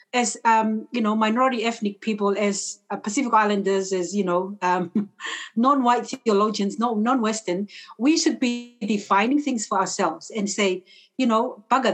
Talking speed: 155 wpm